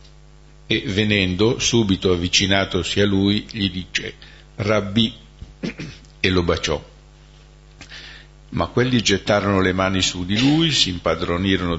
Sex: male